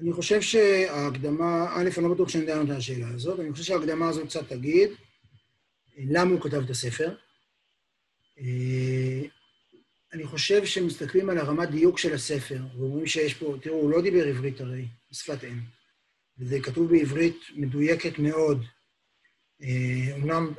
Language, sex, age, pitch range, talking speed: Hebrew, male, 30-49, 140-180 Hz, 140 wpm